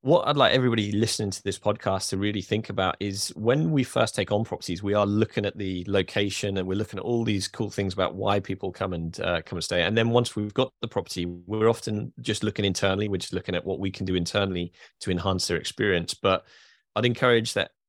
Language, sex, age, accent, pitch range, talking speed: English, male, 20-39, British, 95-110 Hz, 240 wpm